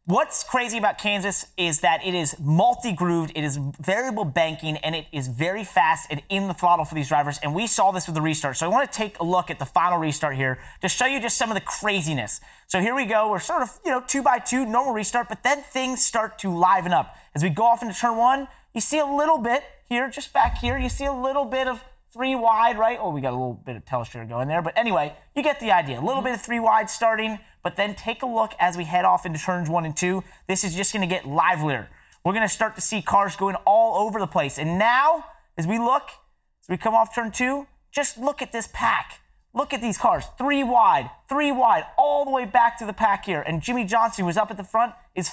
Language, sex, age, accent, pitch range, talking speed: English, male, 30-49, American, 175-240 Hz, 260 wpm